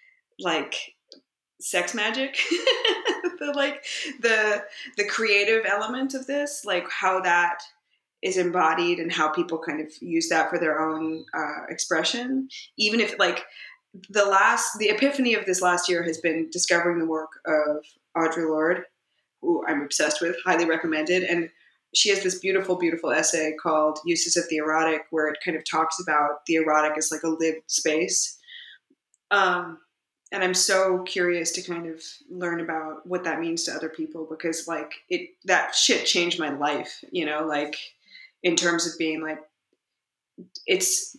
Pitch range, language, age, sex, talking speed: 160-200 Hz, English, 20-39, female, 160 wpm